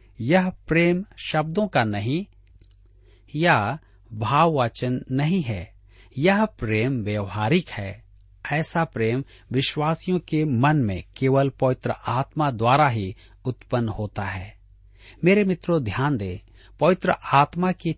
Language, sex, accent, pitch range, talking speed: Hindi, male, native, 105-155 Hz, 115 wpm